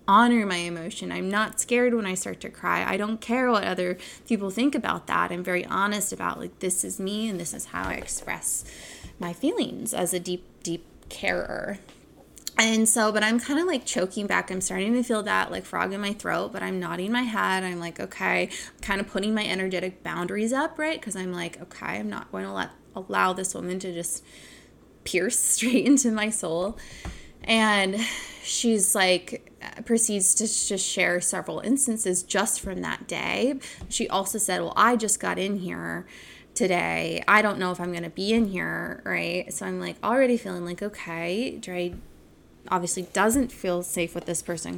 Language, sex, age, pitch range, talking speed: English, female, 20-39, 180-225 Hz, 195 wpm